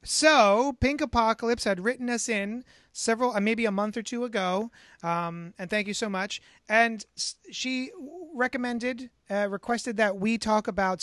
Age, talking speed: 30-49, 160 wpm